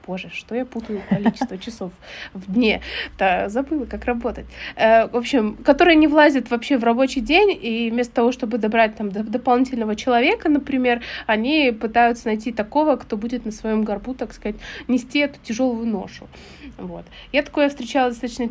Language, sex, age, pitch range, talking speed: Russian, female, 20-39, 225-275 Hz, 160 wpm